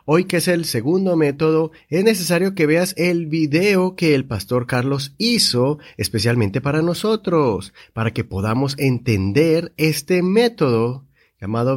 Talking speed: 140 wpm